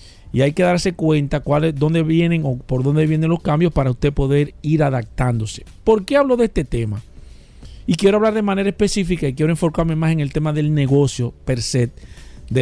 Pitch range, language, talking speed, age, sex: 135-175 Hz, Spanish, 210 wpm, 50-69, male